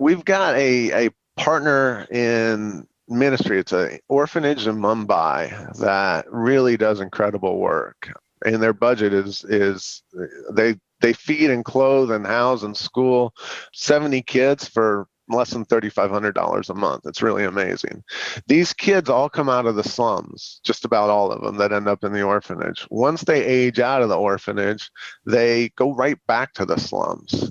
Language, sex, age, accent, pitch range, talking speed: English, male, 30-49, American, 110-135 Hz, 165 wpm